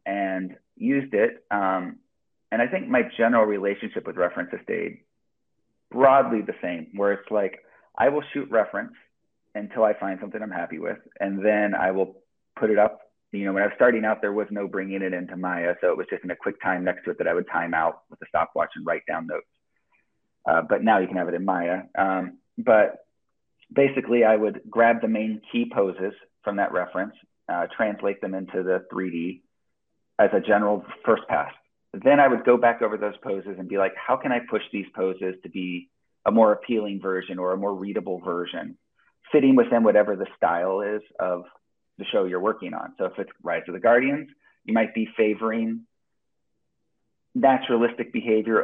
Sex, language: male, English